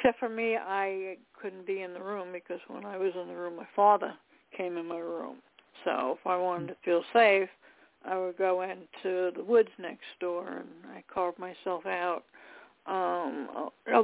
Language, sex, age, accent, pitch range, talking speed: English, female, 60-79, American, 185-230 Hz, 190 wpm